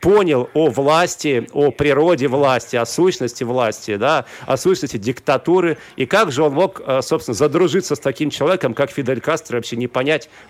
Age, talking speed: 40-59, 160 wpm